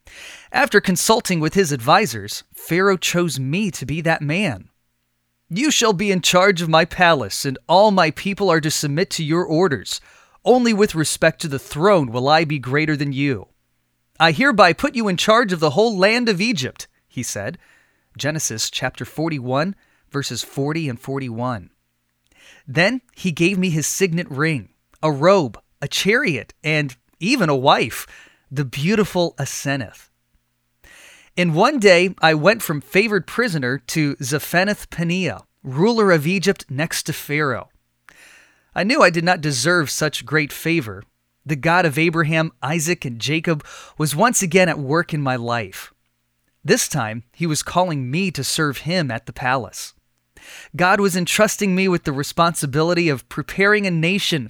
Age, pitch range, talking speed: 30-49, 135-185 Hz, 160 wpm